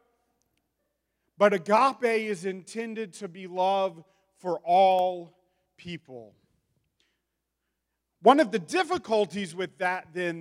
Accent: American